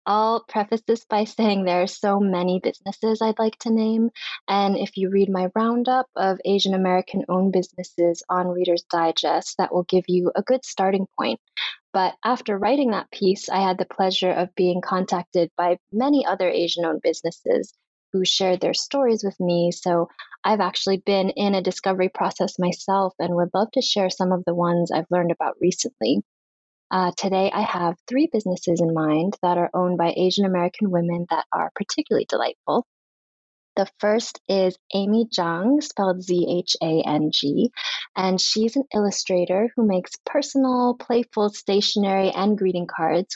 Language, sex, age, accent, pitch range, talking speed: English, female, 20-39, American, 180-210 Hz, 165 wpm